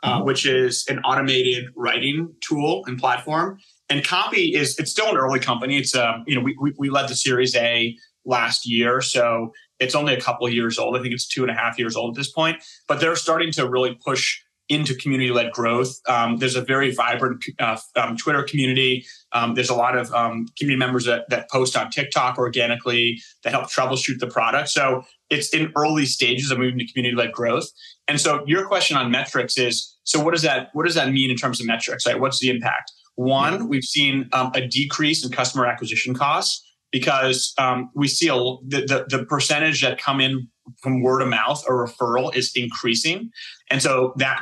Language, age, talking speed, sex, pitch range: English, 30-49, 205 wpm, male, 120-140 Hz